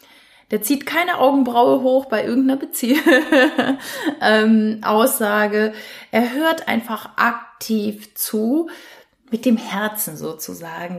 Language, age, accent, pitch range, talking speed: German, 30-49, German, 195-255 Hz, 105 wpm